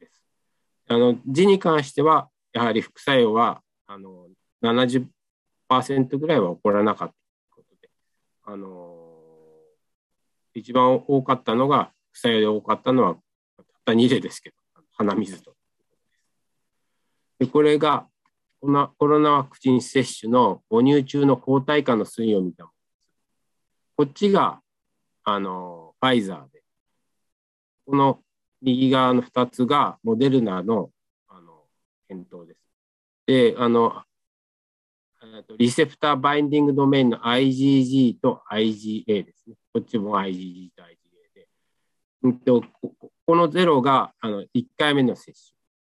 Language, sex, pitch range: Japanese, male, 110-145 Hz